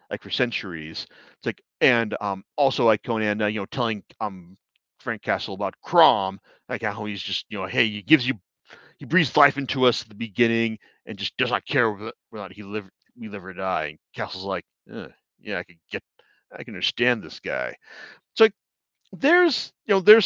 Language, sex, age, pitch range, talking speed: English, male, 40-59, 105-170 Hz, 200 wpm